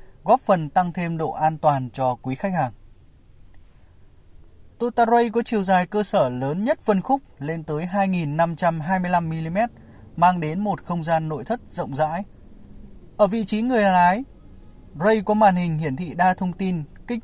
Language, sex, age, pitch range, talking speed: Vietnamese, male, 20-39, 140-200 Hz, 170 wpm